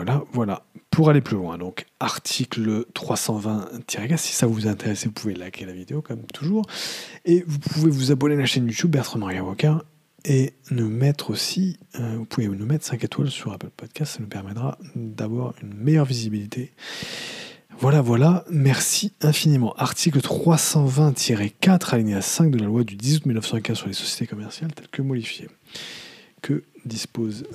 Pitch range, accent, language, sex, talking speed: 110-160 Hz, French, English, male, 160 wpm